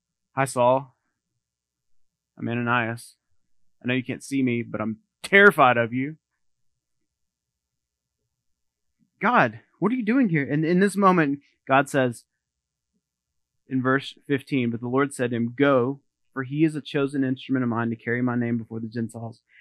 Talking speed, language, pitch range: 160 wpm, English, 110-135 Hz